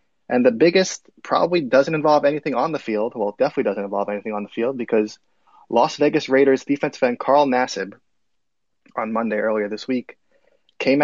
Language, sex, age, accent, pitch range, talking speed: English, male, 20-39, American, 110-135 Hz, 180 wpm